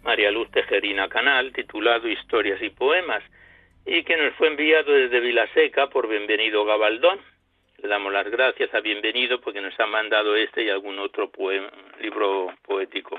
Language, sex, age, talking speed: Spanish, male, 60-79, 155 wpm